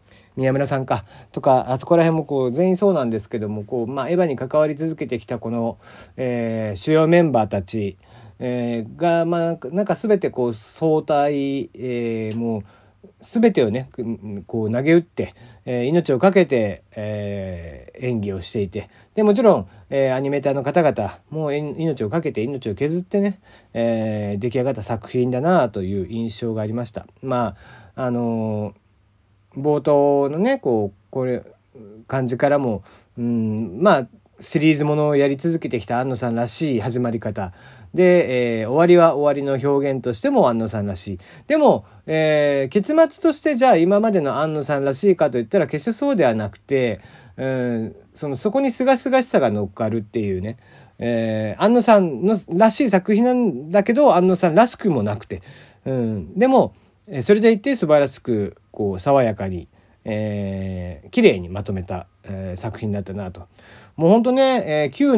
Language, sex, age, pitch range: Japanese, male, 40-59, 105-160 Hz